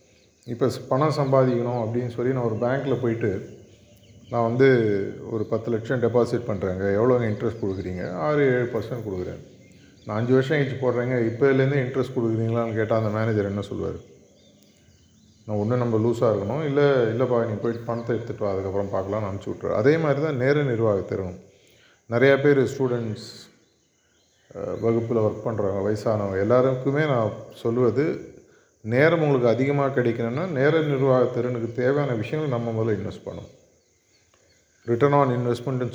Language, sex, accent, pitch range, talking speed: Tamil, male, native, 110-135 Hz, 135 wpm